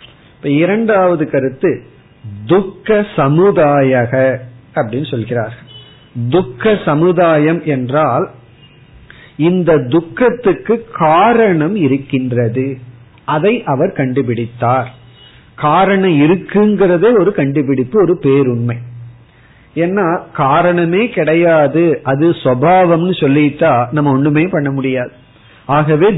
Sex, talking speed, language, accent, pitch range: male, 80 wpm, Tamil, native, 130-170 Hz